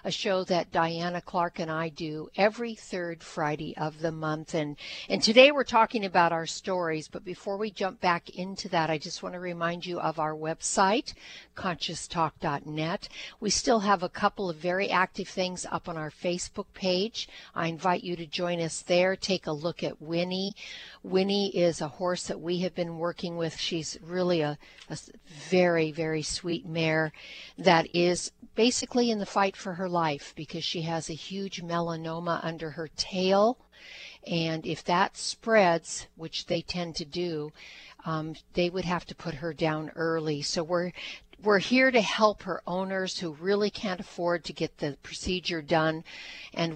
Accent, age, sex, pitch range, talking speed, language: American, 60-79, female, 160-185 Hz, 175 wpm, English